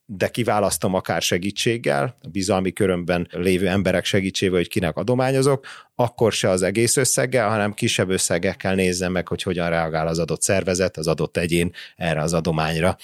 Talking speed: 155 wpm